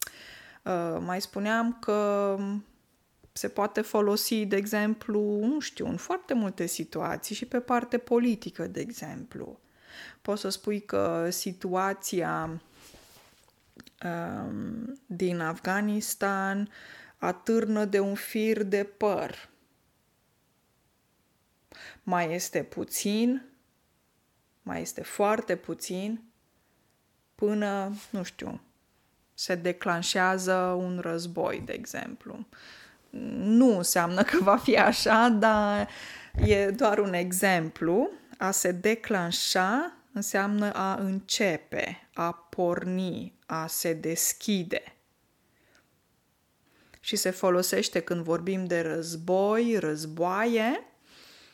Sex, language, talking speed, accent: female, Romanian, 90 wpm, native